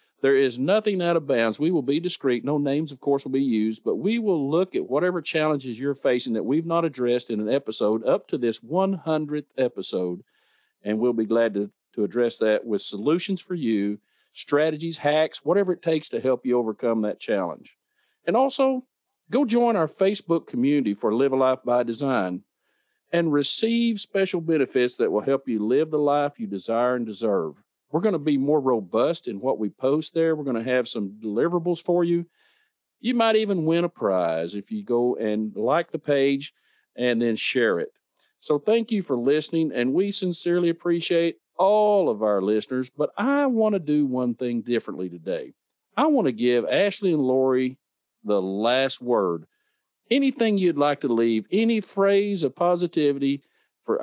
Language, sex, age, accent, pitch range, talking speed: English, male, 50-69, American, 120-175 Hz, 185 wpm